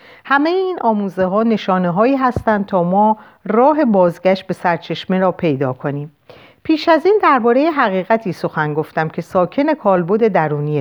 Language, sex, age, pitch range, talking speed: Persian, female, 50-69, 175-250 Hz, 150 wpm